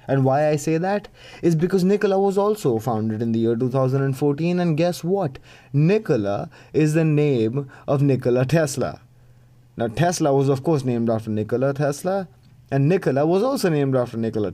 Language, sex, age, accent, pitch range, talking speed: English, male, 20-39, Indian, 125-145 Hz, 170 wpm